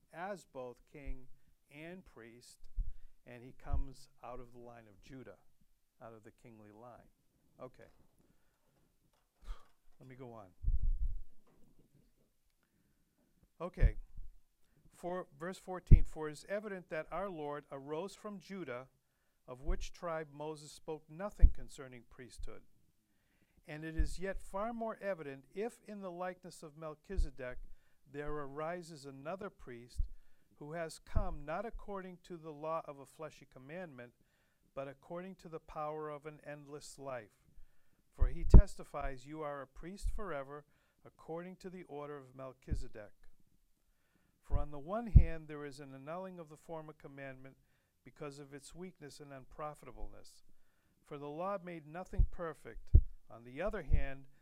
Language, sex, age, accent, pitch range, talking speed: English, male, 50-69, American, 135-170 Hz, 140 wpm